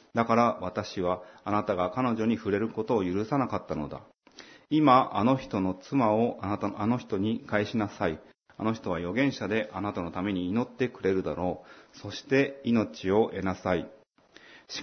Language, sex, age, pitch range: Japanese, male, 30-49, 95-120 Hz